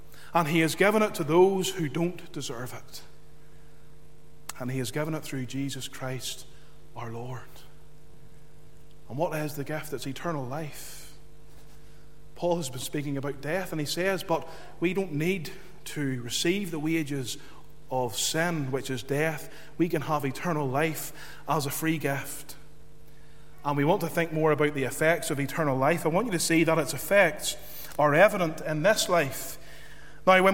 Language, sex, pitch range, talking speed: English, male, 150-200 Hz, 170 wpm